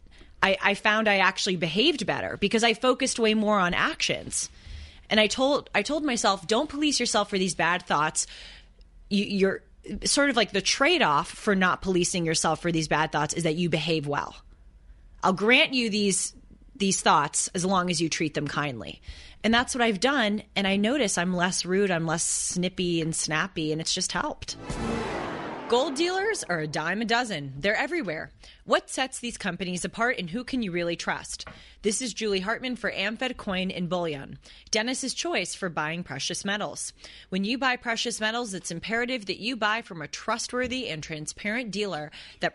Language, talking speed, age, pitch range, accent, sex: English, 185 wpm, 30-49, 170-235 Hz, American, female